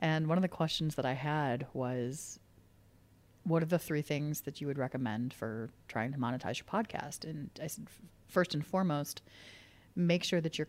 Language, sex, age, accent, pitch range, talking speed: English, female, 30-49, American, 140-170 Hz, 190 wpm